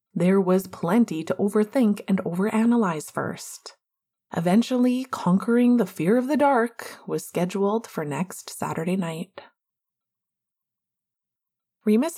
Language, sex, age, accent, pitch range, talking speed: English, female, 20-39, American, 175-225 Hz, 110 wpm